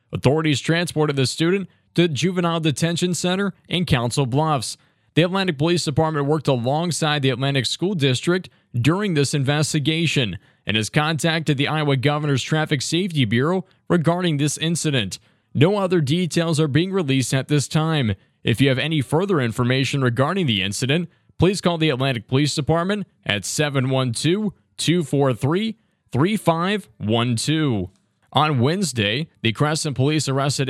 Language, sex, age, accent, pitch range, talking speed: English, male, 20-39, American, 135-165 Hz, 135 wpm